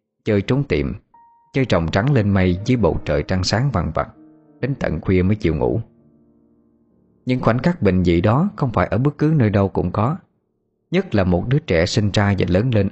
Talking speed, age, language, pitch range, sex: 215 wpm, 20-39, Vietnamese, 90-135 Hz, male